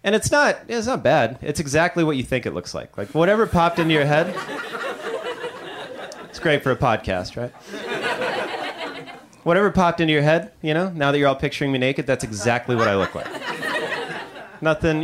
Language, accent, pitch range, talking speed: English, American, 125-170 Hz, 190 wpm